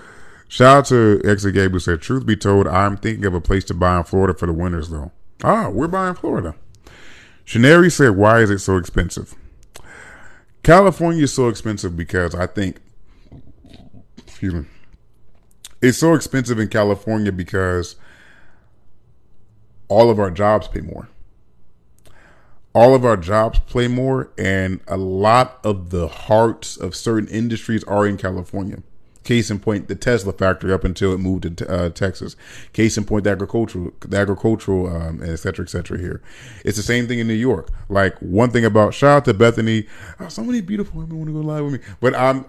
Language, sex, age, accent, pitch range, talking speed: English, male, 30-49, American, 95-125 Hz, 170 wpm